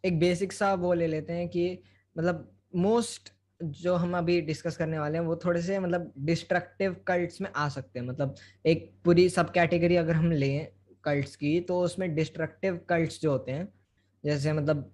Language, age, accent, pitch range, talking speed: Hindi, 20-39, native, 135-175 Hz, 185 wpm